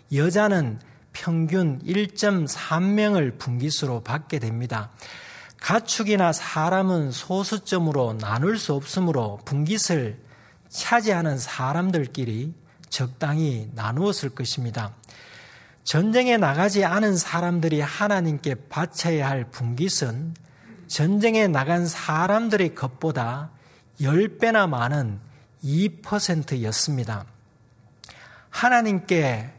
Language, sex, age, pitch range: Korean, male, 40-59, 125-185 Hz